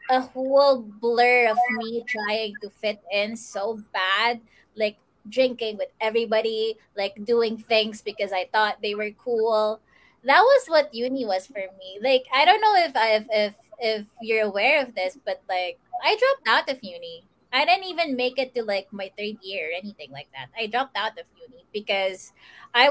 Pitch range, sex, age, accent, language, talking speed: 205-255 Hz, female, 20-39, Filipino, English, 185 wpm